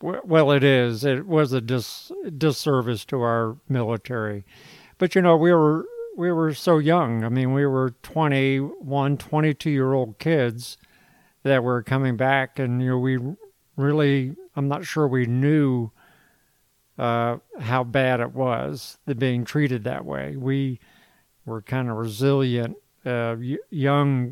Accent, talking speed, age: American, 155 wpm, 50-69